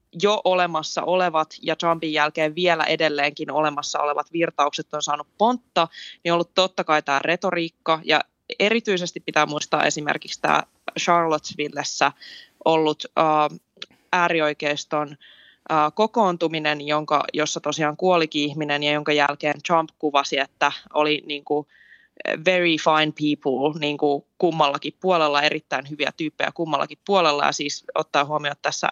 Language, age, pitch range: Finnish, 20-39, 150-170 Hz